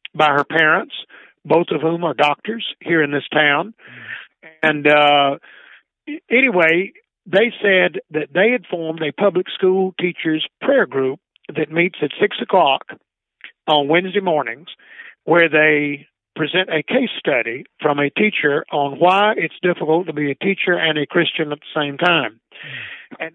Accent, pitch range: American, 150-190 Hz